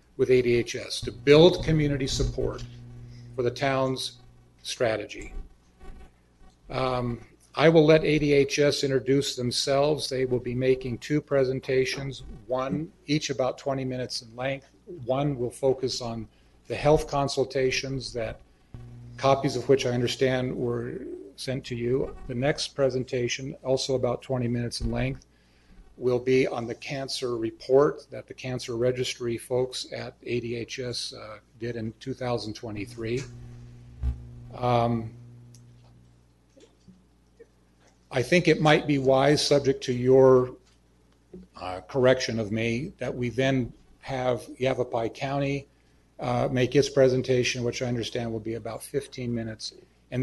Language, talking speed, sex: English, 125 wpm, male